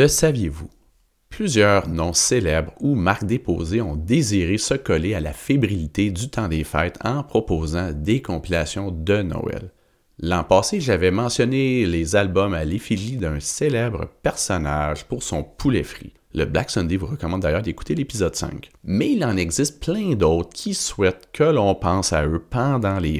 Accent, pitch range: Canadian, 85-120 Hz